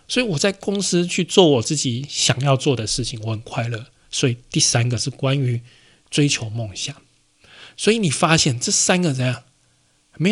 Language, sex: Chinese, male